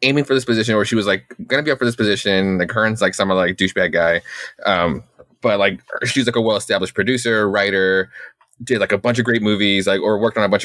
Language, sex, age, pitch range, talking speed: English, male, 20-39, 100-120 Hz, 255 wpm